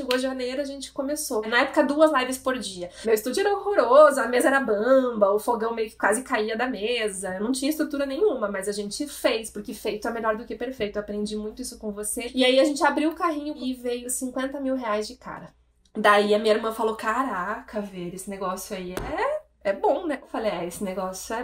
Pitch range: 215-280 Hz